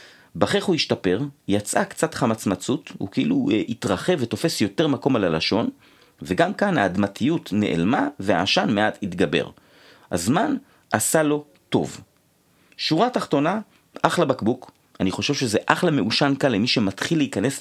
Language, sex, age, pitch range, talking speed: Hebrew, male, 40-59, 100-155 Hz, 130 wpm